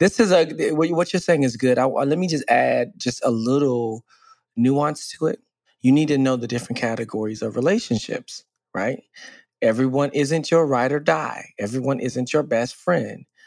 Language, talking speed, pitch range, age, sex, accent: English, 175 wpm, 120-165 Hz, 20-39, male, American